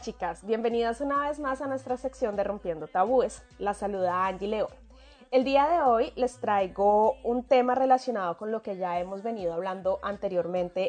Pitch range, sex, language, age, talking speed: 200-280 Hz, female, Spanish, 20-39, 175 wpm